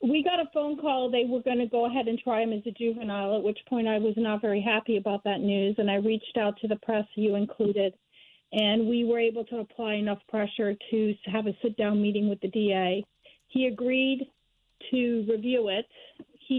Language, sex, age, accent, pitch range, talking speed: English, female, 50-69, American, 205-235 Hz, 215 wpm